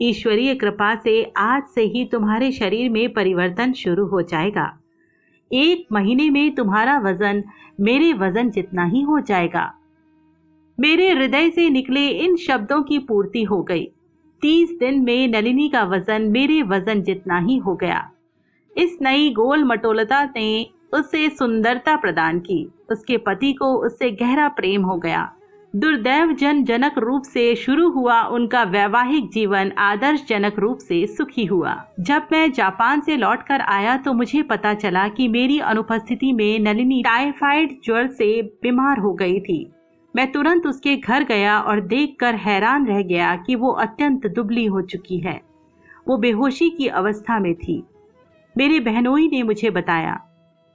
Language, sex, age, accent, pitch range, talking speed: Hindi, female, 50-69, native, 205-285 Hz, 155 wpm